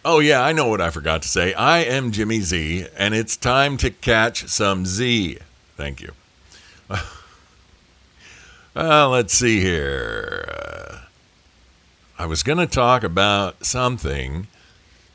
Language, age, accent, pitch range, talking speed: English, 50-69, American, 75-105 Hz, 135 wpm